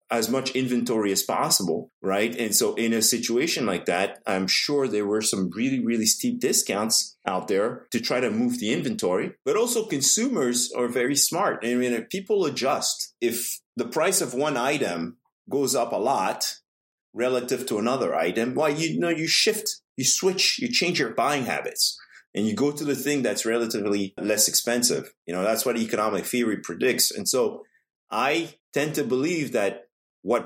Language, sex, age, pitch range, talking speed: English, male, 30-49, 105-140 Hz, 180 wpm